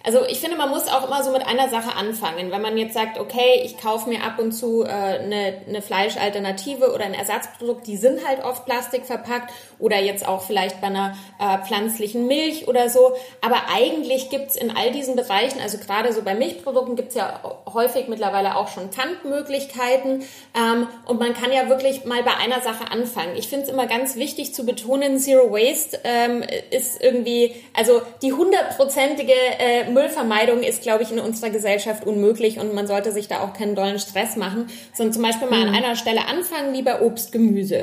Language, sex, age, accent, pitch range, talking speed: German, female, 20-39, German, 215-255 Hz, 195 wpm